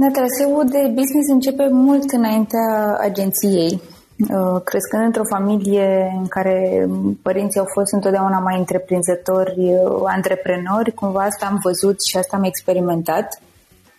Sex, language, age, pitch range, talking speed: female, Romanian, 20-39, 190-230 Hz, 115 wpm